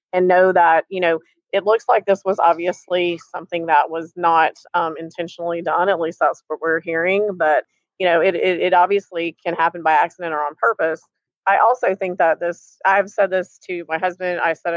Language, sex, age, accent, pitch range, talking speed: English, female, 30-49, American, 160-180 Hz, 205 wpm